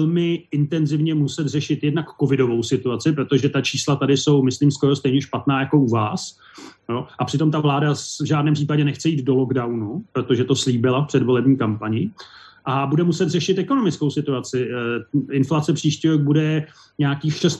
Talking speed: 155 wpm